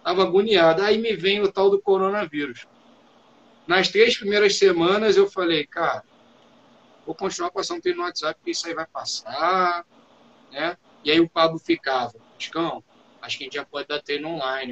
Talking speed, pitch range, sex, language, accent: 180 wpm, 160-210 Hz, male, Portuguese, Brazilian